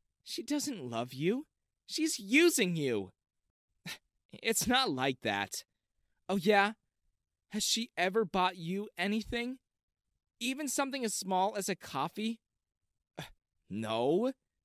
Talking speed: 110 wpm